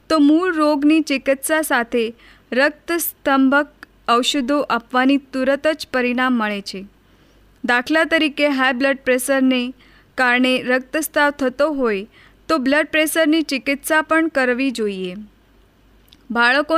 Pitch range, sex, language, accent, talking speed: 255-300 Hz, female, Hindi, native, 100 wpm